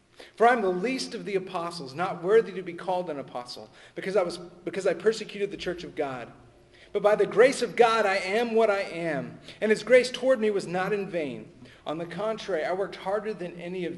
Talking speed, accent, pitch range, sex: 225 wpm, American, 130-205 Hz, male